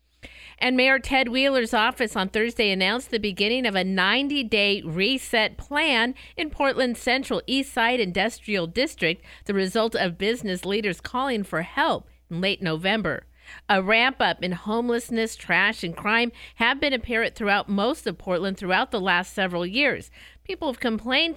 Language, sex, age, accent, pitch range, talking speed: English, female, 50-69, American, 190-240 Hz, 150 wpm